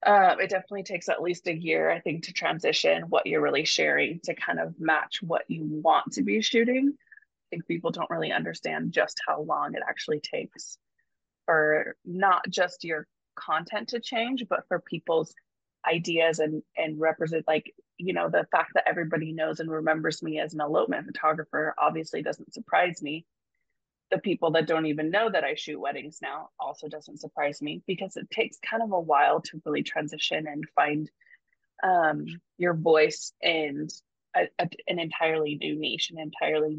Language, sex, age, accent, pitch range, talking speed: English, female, 20-39, American, 155-195 Hz, 175 wpm